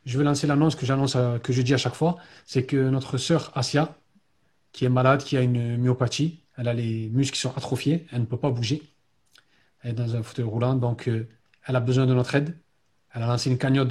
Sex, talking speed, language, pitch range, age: male, 235 wpm, French, 125-155 Hz, 40-59